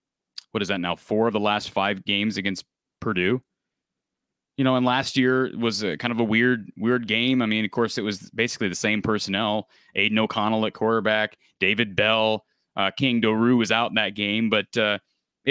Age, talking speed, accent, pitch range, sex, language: 30-49, 195 wpm, American, 105-140 Hz, male, English